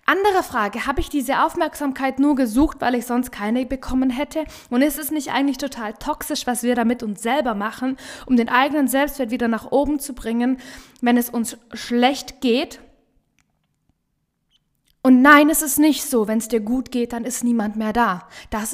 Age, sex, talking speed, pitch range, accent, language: 20-39, female, 185 wpm, 225-275 Hz, German, German